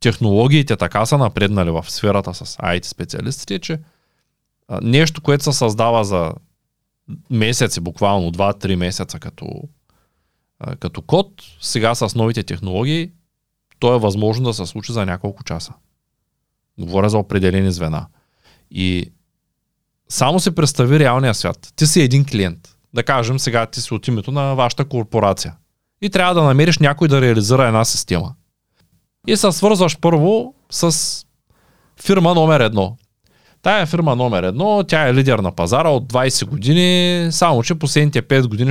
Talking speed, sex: 145 wpm, male